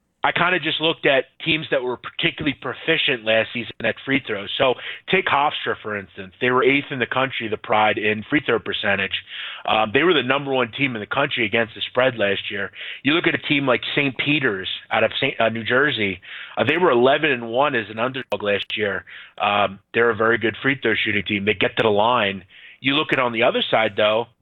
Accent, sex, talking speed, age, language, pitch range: American, male, 230 wpm, 30-49, English, 115-140 Hz